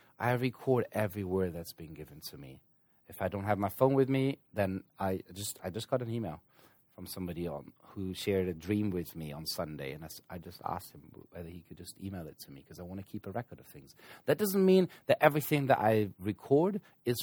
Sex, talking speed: male, 235 wpm